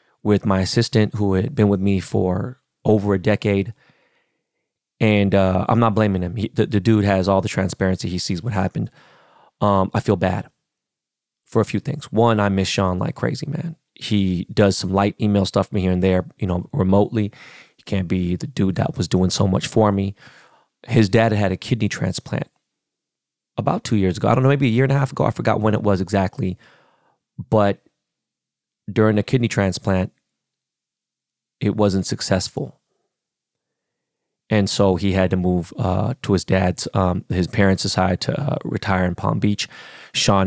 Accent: American